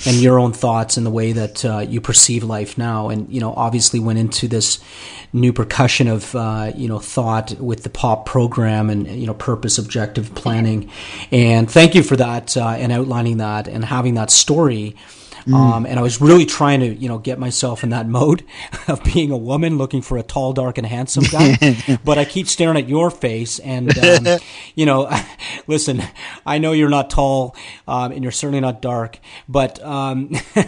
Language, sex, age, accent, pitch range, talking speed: English, male, 40-59, American, 115-135 Hz, 200 wpm